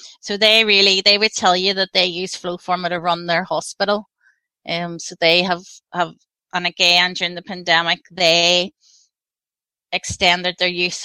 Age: 30-49